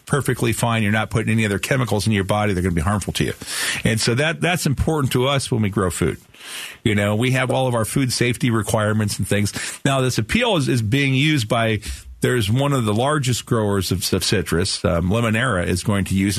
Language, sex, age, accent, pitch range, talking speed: English, male, 50-69, American, 110-140 Hz, 240 wpm